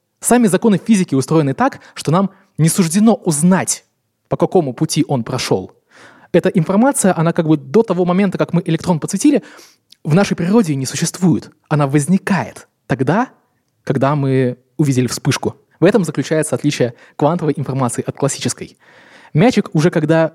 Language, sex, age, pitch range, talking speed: Russian, male, 20-39, 135-195 Hz, 145 wpm